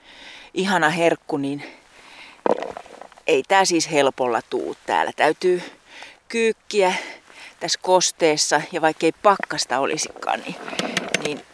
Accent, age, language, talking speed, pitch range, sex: native, 40-59, Finnish, 100 wpm, 155-225 Hz, female